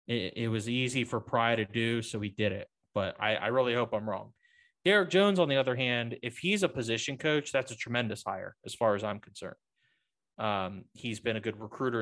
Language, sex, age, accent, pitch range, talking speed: English, male, 30-49, American, 110-125 Hz, 220 wpm